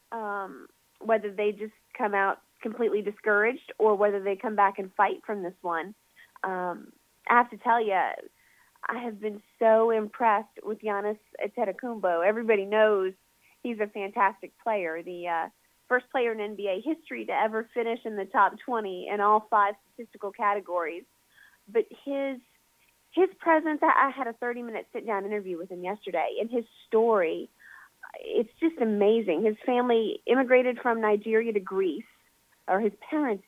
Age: 30-49